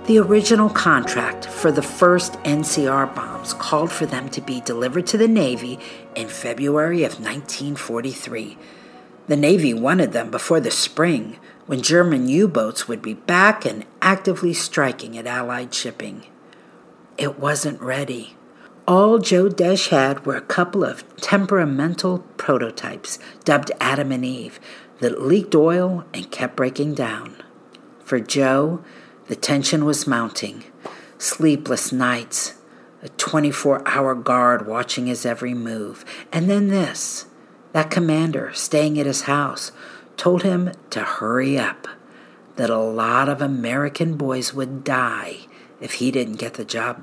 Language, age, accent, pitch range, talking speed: English, 50-69, American, 130-175 Hz, 135 wpm